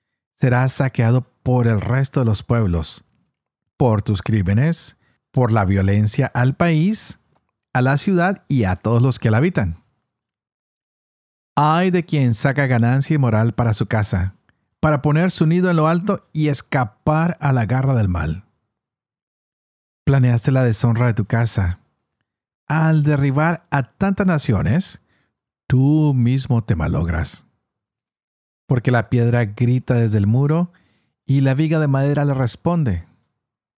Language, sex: Spanish, male